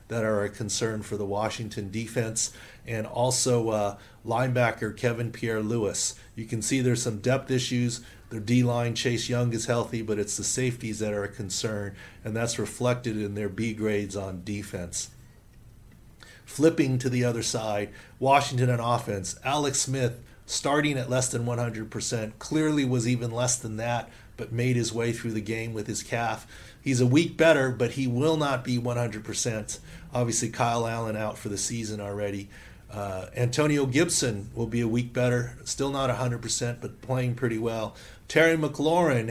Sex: male